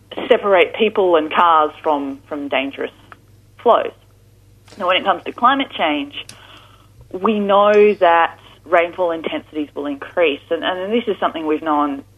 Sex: female